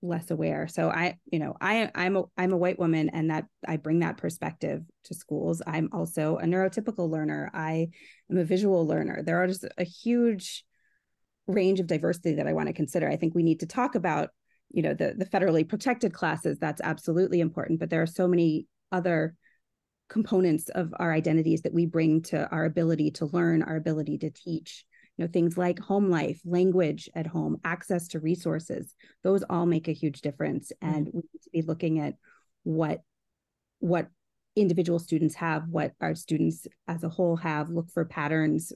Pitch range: 155-180 Hz